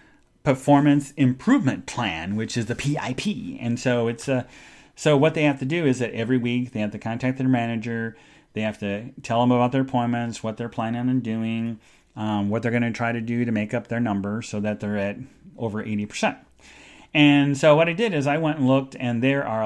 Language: English